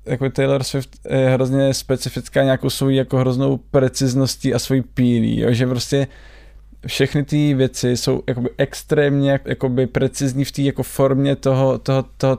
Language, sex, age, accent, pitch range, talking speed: Czech, male, 20-39, native, 125-135 Hz, 155 wpm